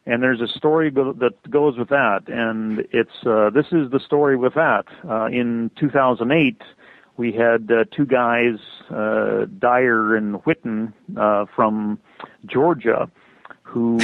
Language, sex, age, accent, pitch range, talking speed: English, male, 40-59, American, 110-150 Hz, 140 wpm